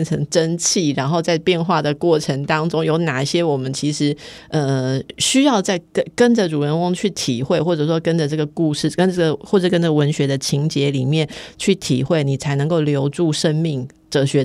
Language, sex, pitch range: Chinese, female, 145-185 Hz